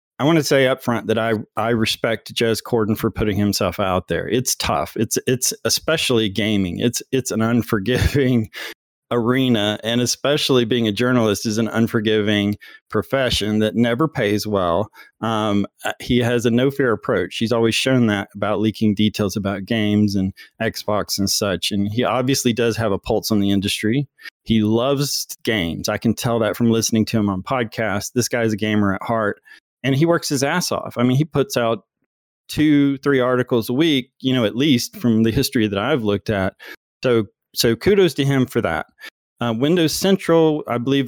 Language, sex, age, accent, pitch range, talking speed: English, male, 30-49, American, 110-130 Hz, 185 wpm